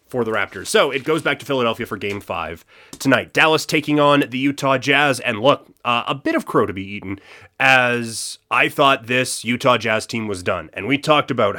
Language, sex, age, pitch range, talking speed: English, male, 30-49, 110-140 Hz, 220 wpm